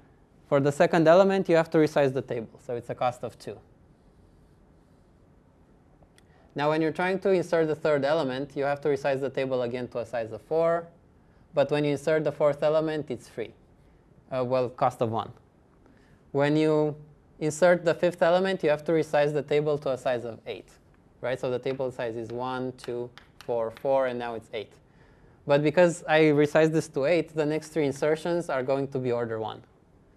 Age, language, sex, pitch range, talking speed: 20-39, English, male, 125-155 Hz, 195 wpm